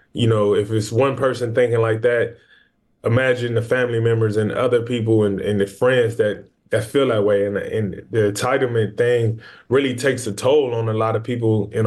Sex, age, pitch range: male, 20-39, 110-125 Hz